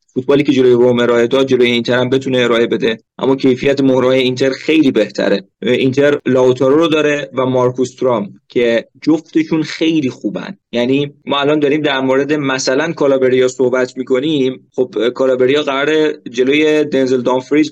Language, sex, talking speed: Persian, male, 145 wpm